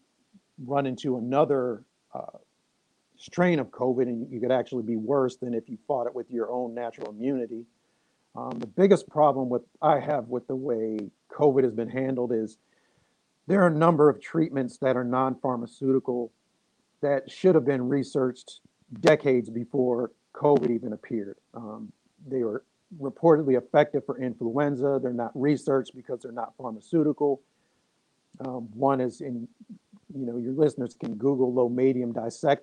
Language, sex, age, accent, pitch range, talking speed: English, male, 50-69, American, 120-145 Hz, 155 wpm